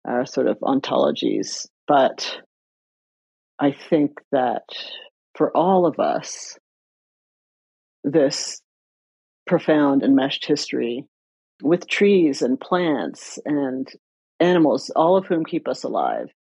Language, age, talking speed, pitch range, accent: English, 40-59, 105 wpm, 140-170 Hz, American